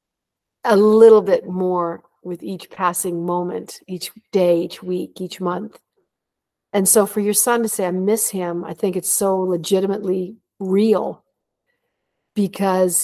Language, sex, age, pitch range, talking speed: English, female, 50-69, 180-215 Hz, 145 wpm